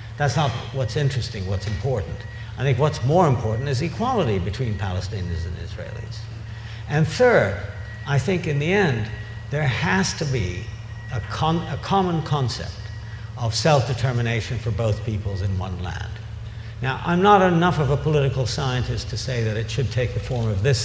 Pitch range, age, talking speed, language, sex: 110-140 Hz, 60-79, 175 wpm, English, male